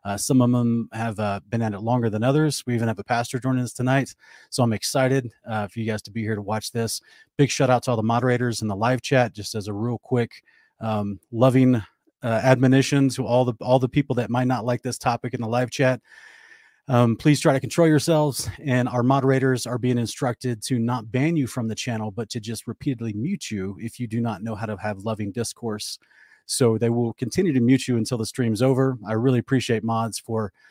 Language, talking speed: English, 235 wpm